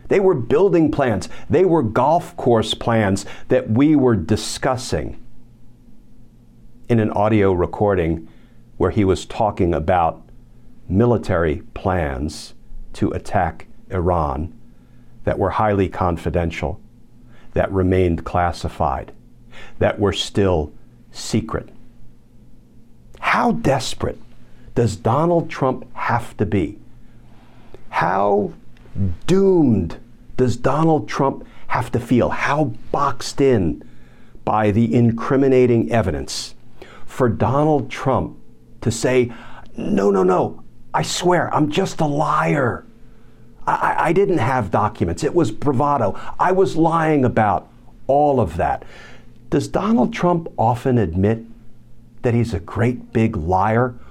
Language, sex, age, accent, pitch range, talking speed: English, male, 50-69, American, 100-130 Hz, 110 wpm